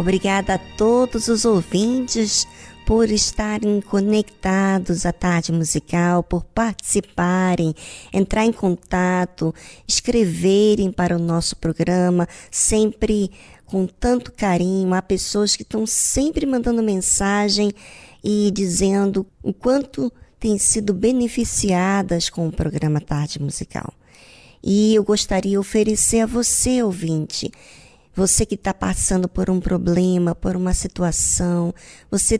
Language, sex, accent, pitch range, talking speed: Portuguese, male, Brazilian, 175-220 Hz, 115 wpm